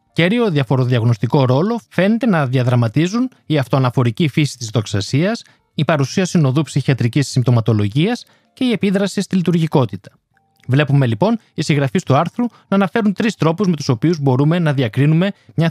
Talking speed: 145 wpm